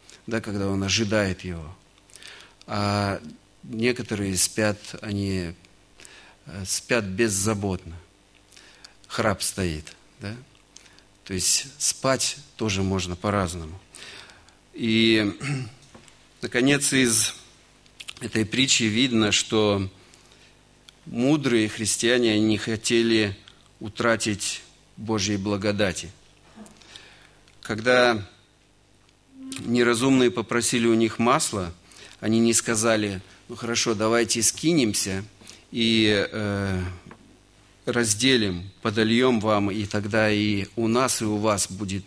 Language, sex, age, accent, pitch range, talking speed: Russian, male, 50-69, native, 100-115 Hz, 85 wpm